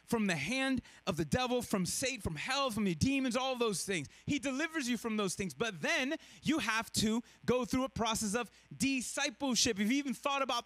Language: English